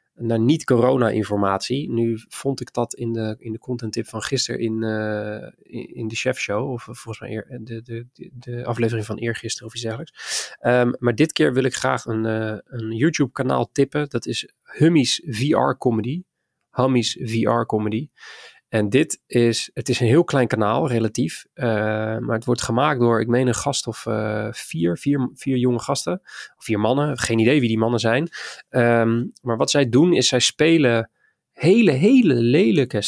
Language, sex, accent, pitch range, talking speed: Dutch, male, Dutch, 110-130 Hz, 170 wpm